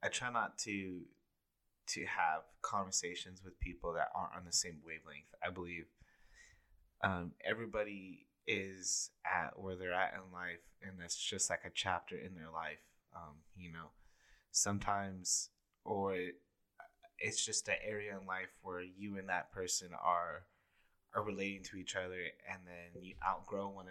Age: 20-39